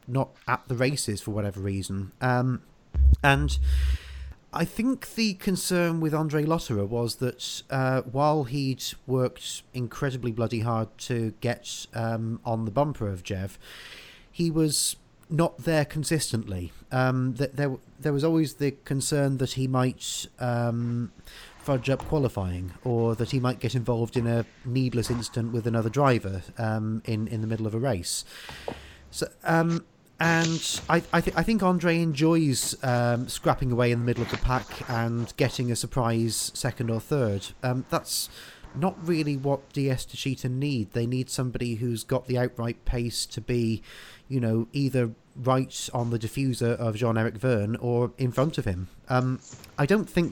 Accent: British